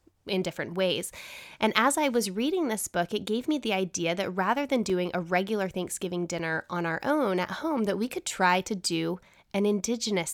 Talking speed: 210 wpm